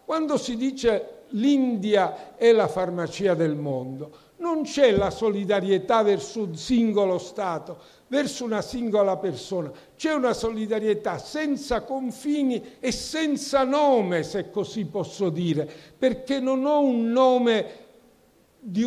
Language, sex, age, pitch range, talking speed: Italian, male, 50-69, 185-240 Hz, 125 wpm